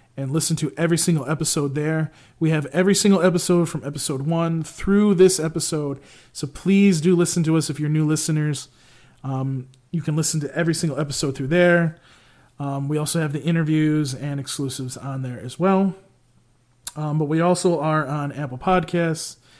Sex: male